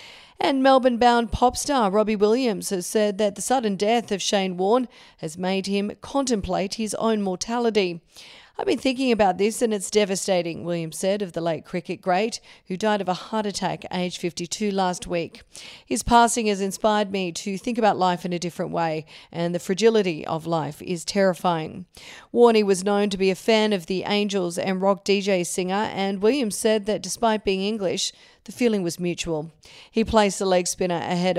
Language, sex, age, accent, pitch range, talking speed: English, female, 40-59, Australian, 175-210 Hz, 185 wpm